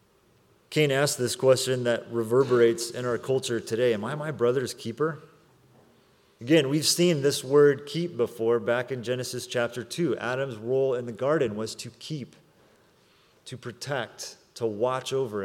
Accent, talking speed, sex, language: American, 155 wpm, male, English